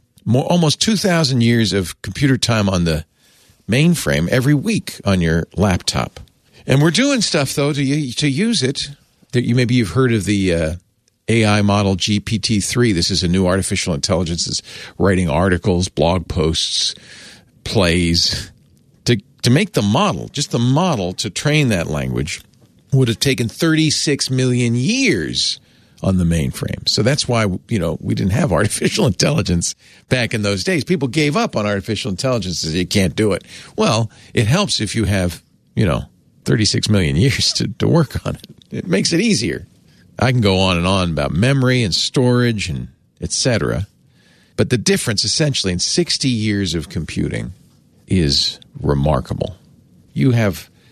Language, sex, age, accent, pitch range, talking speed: English, male, 50-69, American, 95-130 Hz, 165 wpm